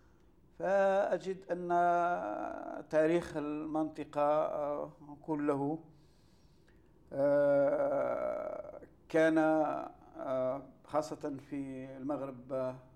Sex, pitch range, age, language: male, 135-180 Hz, 60-79, Arabic